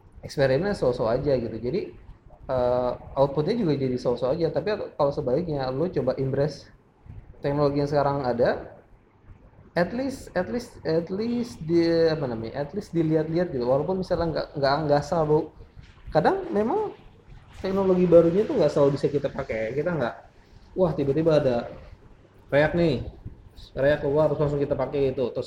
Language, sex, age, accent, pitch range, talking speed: Indonesian, male, 20-39, native, 120-155 Hz, 150 wpm